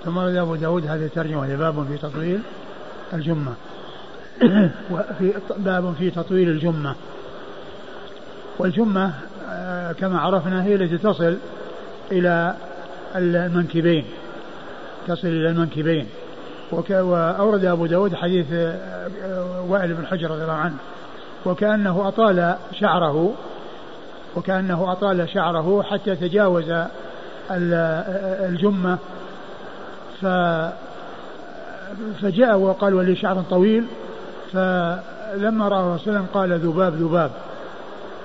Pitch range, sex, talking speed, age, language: 175-205 Hz, male, 85 wpm, 60-79, Arabic